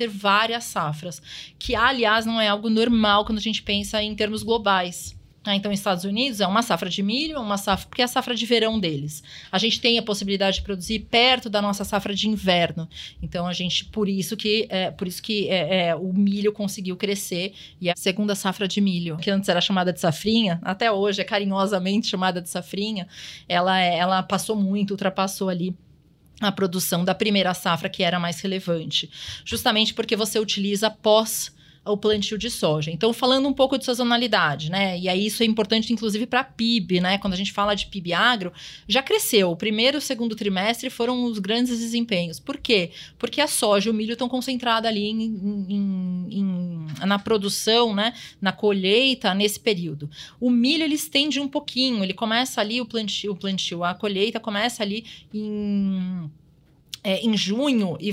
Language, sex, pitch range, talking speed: Portuguese, female, 185-225 Hz, 190 wpm